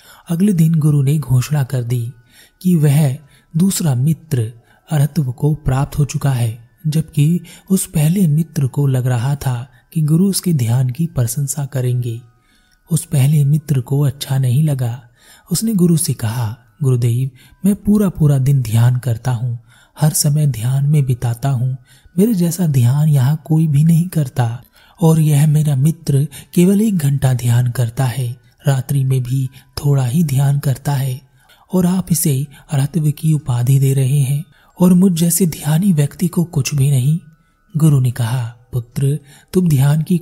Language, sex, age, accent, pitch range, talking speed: Hindi, male, 30-49, native, 130-160 Hz, 160 wpm